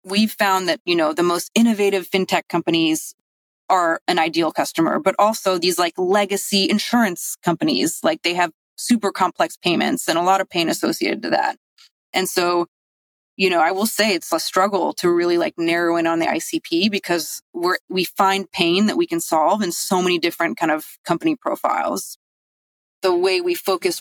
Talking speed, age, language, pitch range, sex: 185 wpm, 20-39, English, 170-230 Hz, female